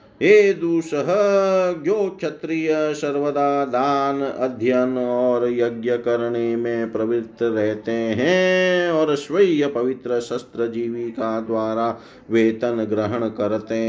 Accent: native